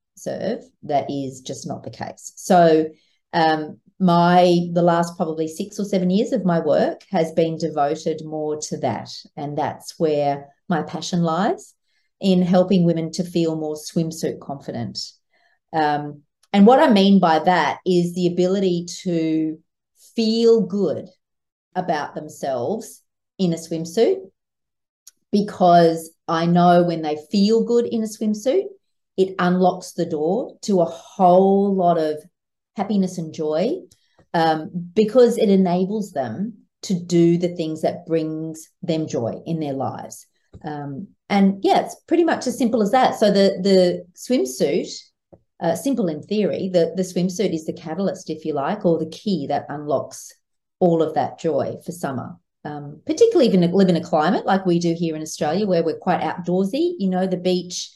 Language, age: English, 40-59